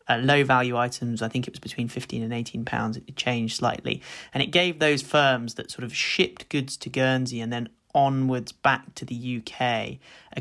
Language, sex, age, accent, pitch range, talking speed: English, male, 20-39, British, 125-140 Hz, 210 wpm